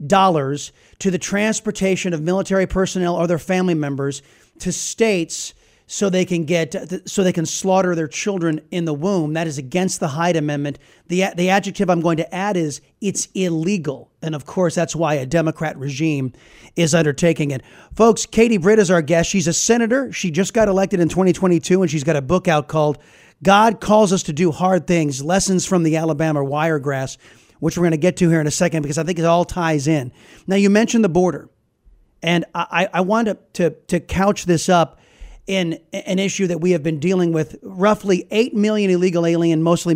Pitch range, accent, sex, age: 155-190 Hz, American, male, 30-49